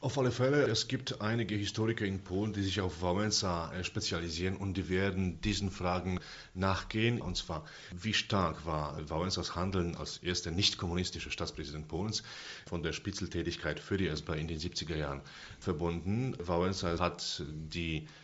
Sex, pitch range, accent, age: male, 85-100 Hz, German, 40-59